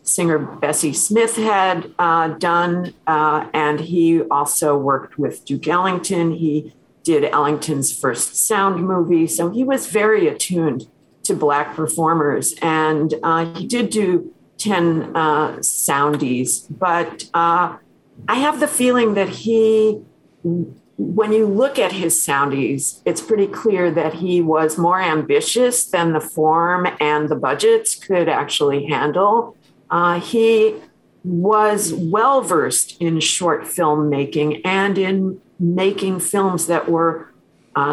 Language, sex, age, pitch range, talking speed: English, female, 50-69, 155-195 Hz, 130 wpm